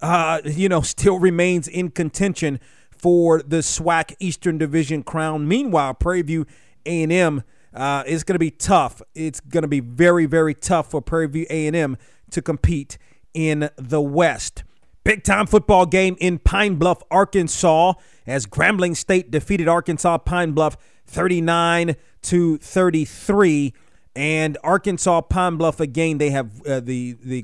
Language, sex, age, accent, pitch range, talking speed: English, male, 30-49, American, 140-180 Hz, 145 wpm